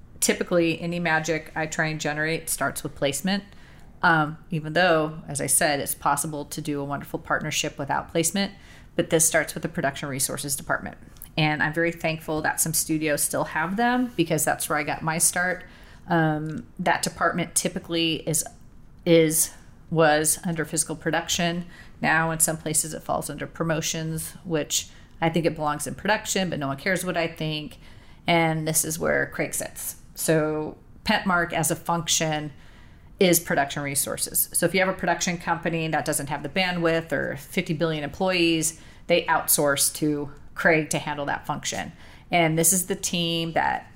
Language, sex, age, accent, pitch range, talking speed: English, female, 30-49, American, 155-175 Hz, 170 wpm